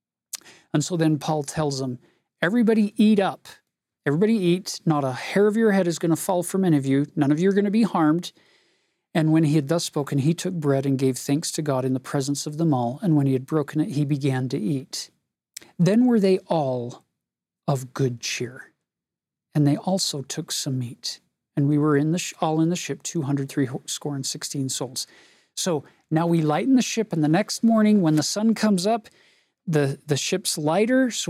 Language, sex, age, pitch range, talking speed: English, male, 40-59, 150-190 Hz, 215 wpm